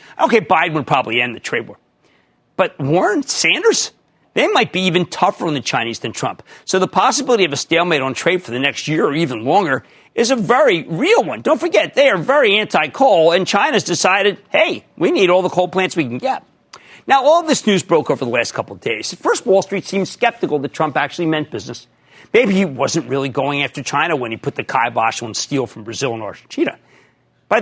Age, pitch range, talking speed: 40-59, 145-210 Hz, 220 wpm